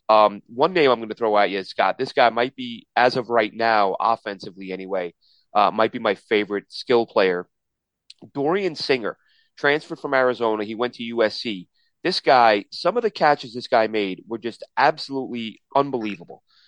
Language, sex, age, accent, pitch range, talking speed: English, male, 30-49, American, 110-130 Hz, 180 wpm